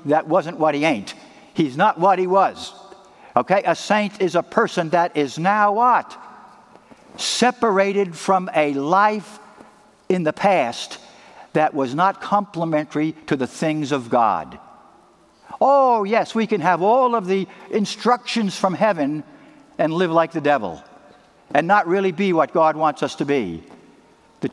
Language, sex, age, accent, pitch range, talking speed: English, male, 60-79, American, 160-210 Hz, 155 wpm